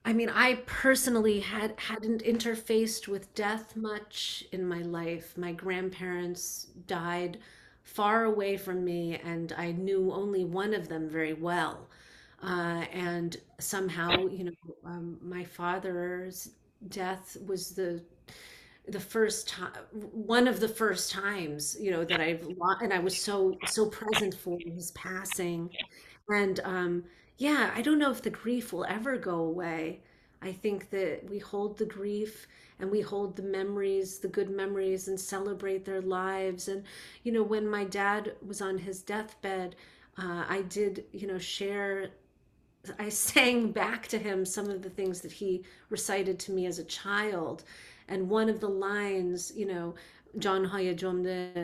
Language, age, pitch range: English, 30-49, 180-210 Hz